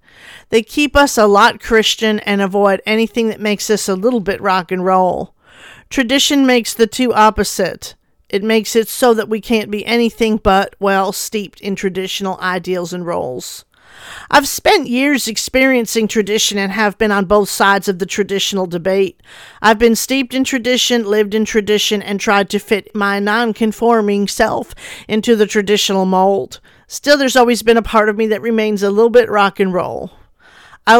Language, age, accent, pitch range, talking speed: English, 50-69, American, 200-230 Hz, 175 wpm